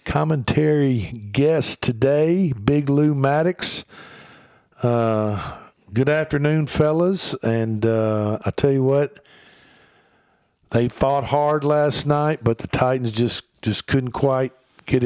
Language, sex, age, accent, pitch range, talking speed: English, male, 50-69, American, 105-125 Hz, 115 wpm